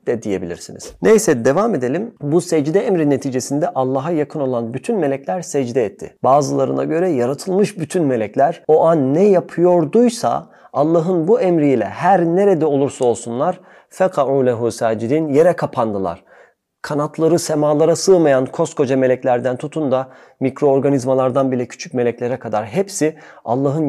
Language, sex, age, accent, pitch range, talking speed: Turkish, male, 40-59, native, 130-170 Hz, 125 wpm